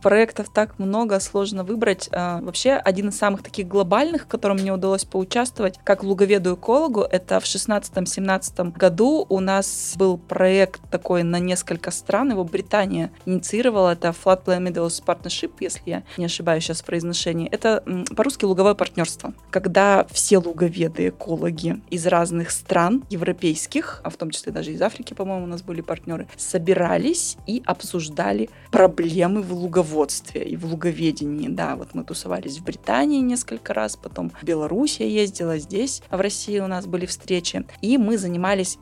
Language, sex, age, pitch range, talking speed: Russian, female, 20-39, 175-205 Hz, 150 wpm